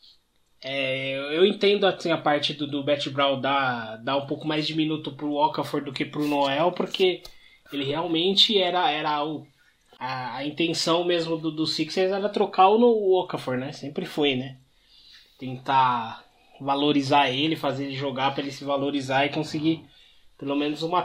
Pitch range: 135-165 Hz